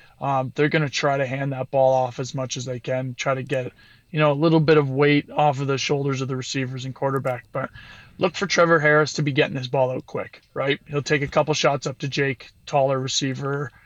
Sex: male